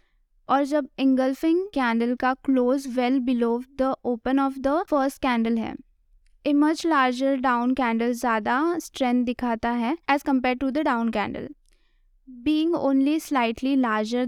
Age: 20-39